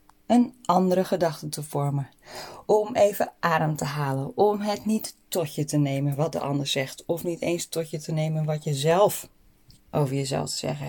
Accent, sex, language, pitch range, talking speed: Dutch, female, Dutch, 160-230 Hz, 195 wpm